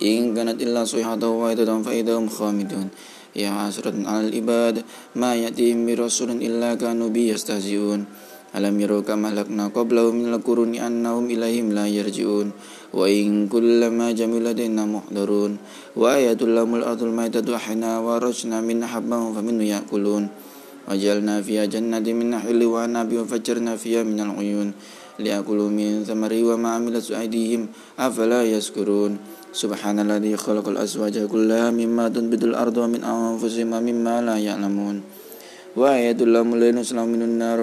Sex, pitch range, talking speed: male, 105-115 Hz, 135 wpm